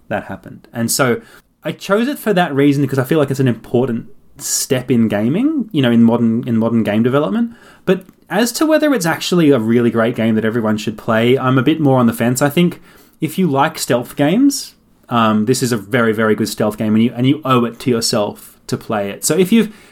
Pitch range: 115-155 Hz